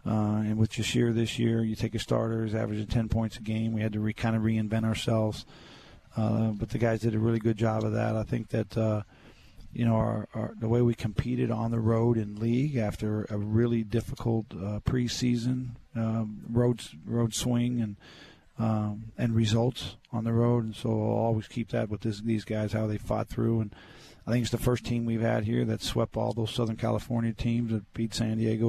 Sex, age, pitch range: male, 40-59, 110-120 Hz